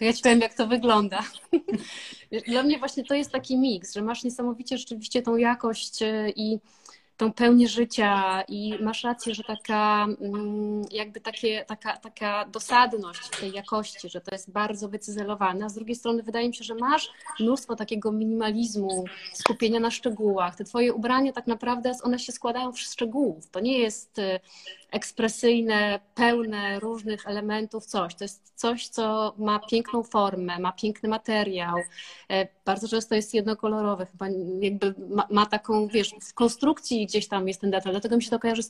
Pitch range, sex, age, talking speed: 200-230 Hz, female, 20-39, 160 wpm